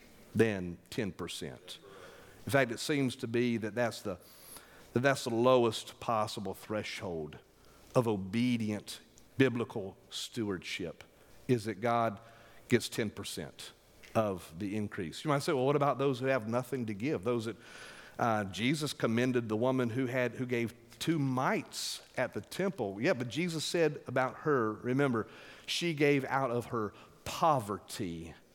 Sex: male